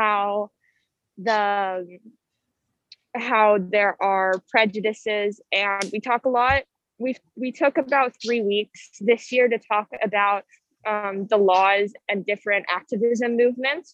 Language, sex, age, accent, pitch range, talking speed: French, female, 20-39, American, 205-245 Hz, 125 wpm